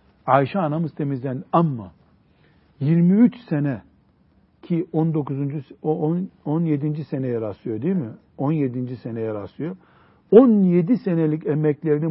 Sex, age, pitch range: male, 60-79, 120-185 Hz